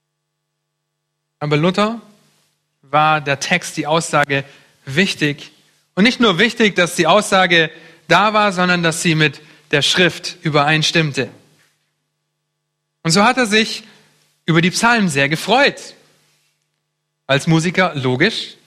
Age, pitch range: 30-49, 145-170 Hz